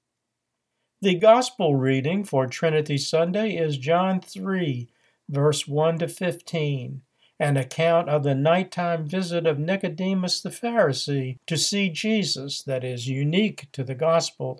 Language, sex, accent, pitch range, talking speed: English, male, American, 140-175 Hz, 130 wpm